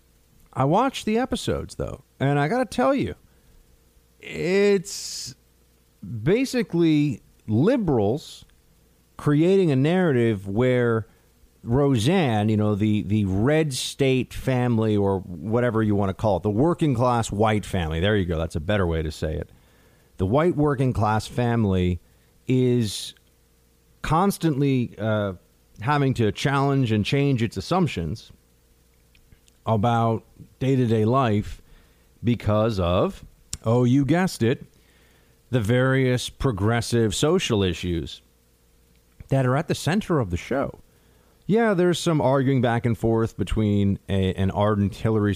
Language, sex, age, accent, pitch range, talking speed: English, male, 40-59, American, 95-130 Hz, 130 wpm